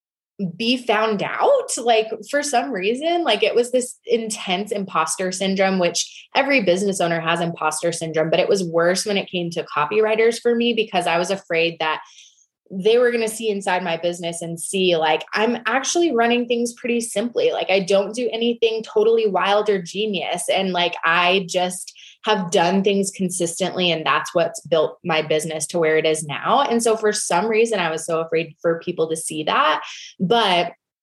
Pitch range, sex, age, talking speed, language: 165-220 Hz, female, 20-39, 190 wpm, English